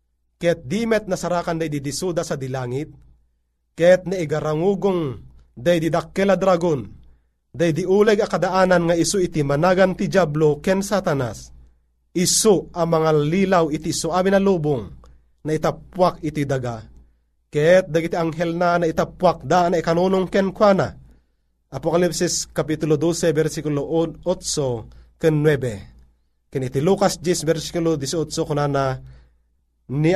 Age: 30-49